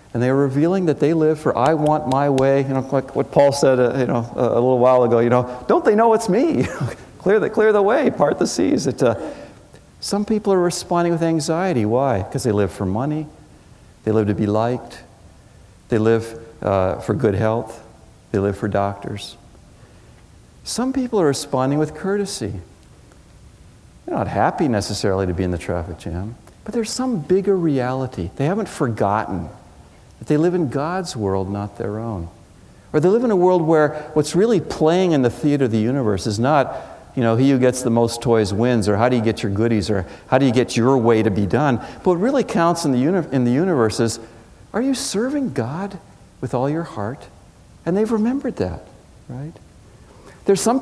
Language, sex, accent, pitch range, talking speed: English, male, American, 105-160 Hz, 205 wpm